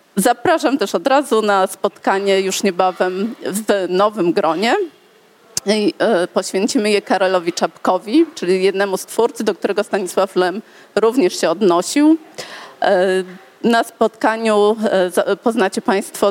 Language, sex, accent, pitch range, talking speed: Polish, female, native, 185-240 Hz, 110 wpm